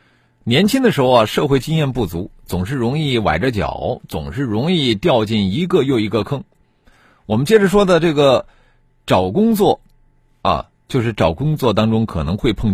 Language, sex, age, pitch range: Chinese, male, 50-69, 95-145 Hz